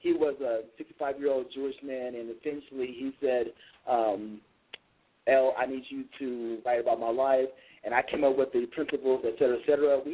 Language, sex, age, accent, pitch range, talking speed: English, male, 30-49, American, 135-175 Hz, 190 wpm